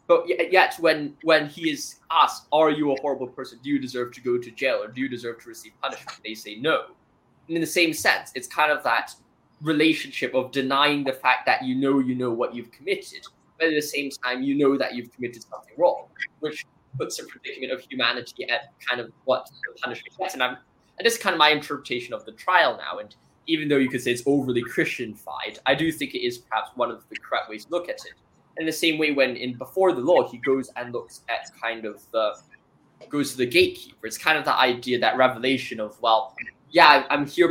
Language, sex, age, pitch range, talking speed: English, male, 10-29, 120-155 Hz, 230 wpm